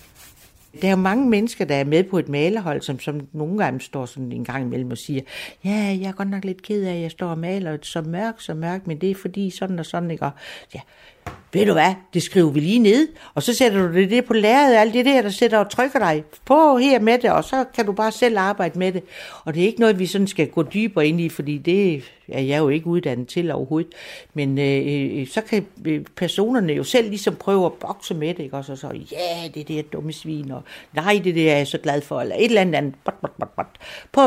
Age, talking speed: 60-79, 260 wpm